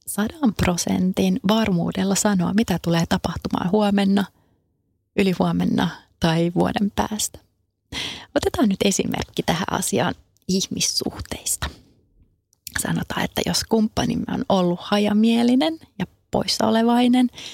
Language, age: Finnish, 30-49